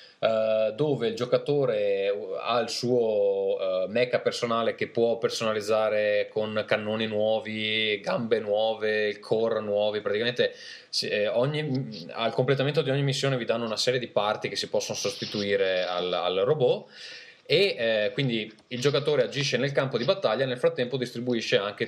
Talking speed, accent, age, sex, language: 140 wpm, native, 20-39, male, Italian